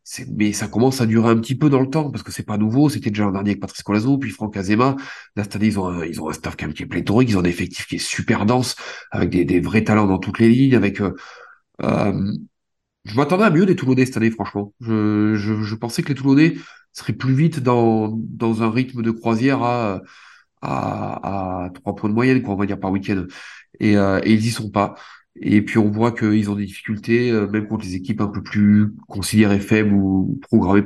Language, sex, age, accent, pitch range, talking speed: French, male, 30-49, French, 100-120 Hz, 240 wpm